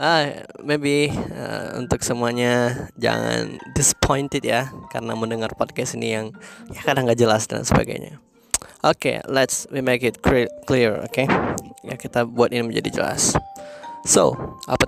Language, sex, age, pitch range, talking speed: Indonesian, male, 10-29, 115-140 Hz, 150 wpm